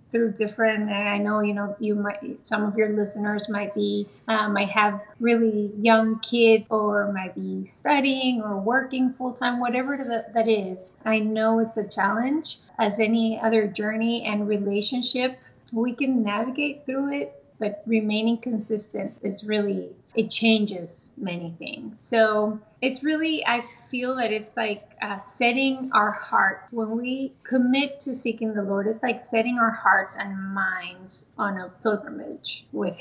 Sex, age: female, 30-49